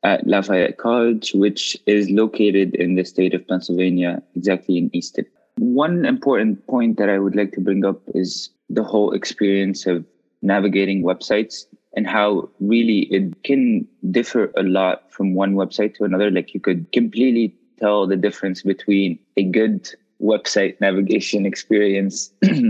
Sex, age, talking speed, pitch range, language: male, 20-39, 150 wpm, 95-105 Hz, English